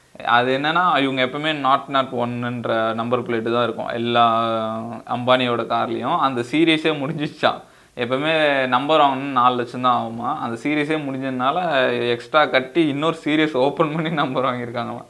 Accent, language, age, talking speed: native, Tamil, 20-39, 140 wpm